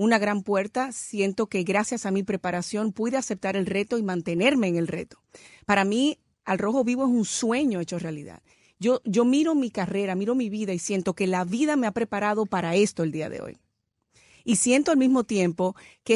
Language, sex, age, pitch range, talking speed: English, female, 40-59, 190-240 Hz, 210 wpm